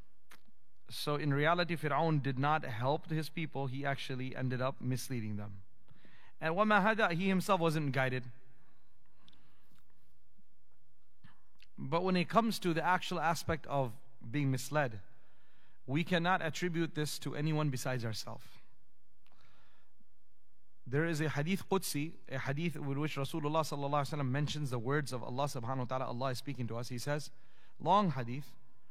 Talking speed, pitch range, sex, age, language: 140 wpm, 130-150 Hz, male, 30-49, English